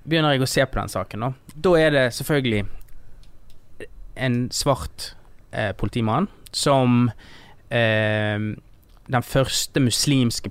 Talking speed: 125 wpm